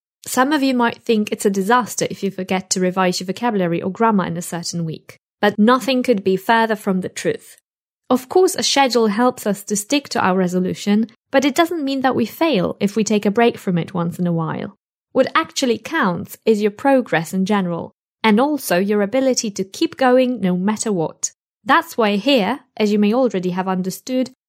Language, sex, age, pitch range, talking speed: English, female, 20-39, 190-250 Hz, 210 wpm